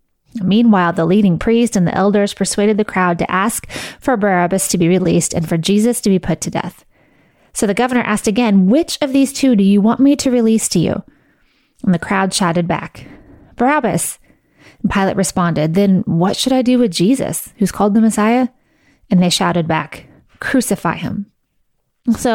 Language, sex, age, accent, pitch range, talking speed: English, female, 20-39, American, 185-235 Hz, 185 wpm